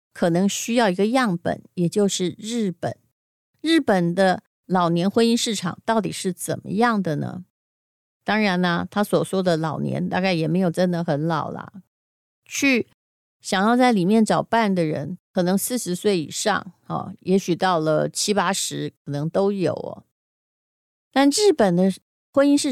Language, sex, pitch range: Chinese, female, 180-235 Hz